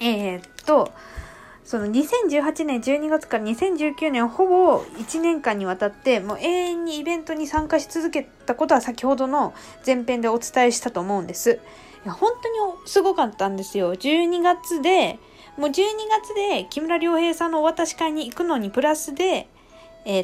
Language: Japanese